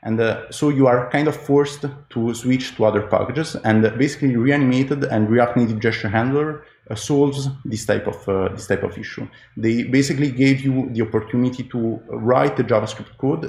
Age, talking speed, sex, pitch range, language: 30-49, 185 wpm, male, 110-130 Hz, English